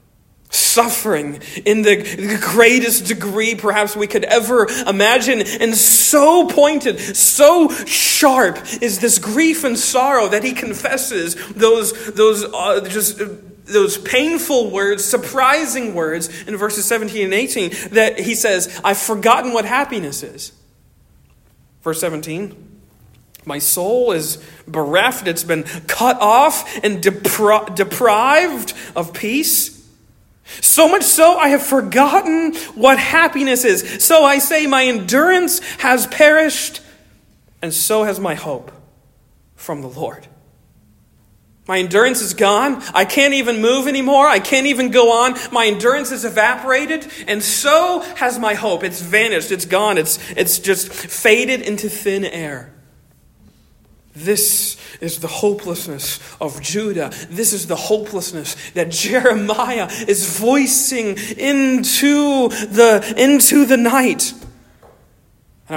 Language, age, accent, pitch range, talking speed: English, 40-59, American, 195-260 Hz, 125 wpm